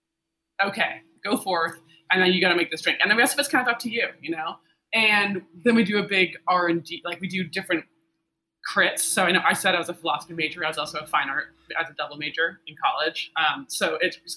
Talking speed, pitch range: 260 wpm, 165-220 Hz